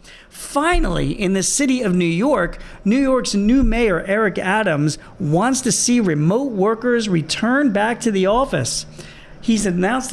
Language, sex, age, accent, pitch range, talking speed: English, male, 40-59, American, 165-225 Hz, 150 wpm